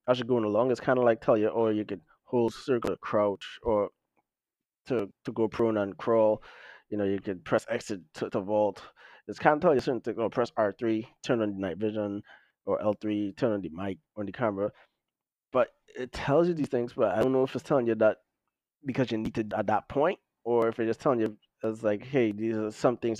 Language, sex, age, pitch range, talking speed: English, male, 20-39, 105-120 Hz, 245 wpm